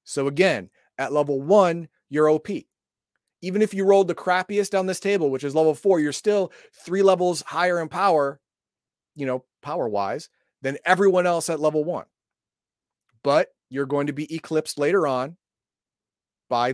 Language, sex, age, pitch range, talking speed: English, male, 30-49, 140-185 Hz, 160 wpm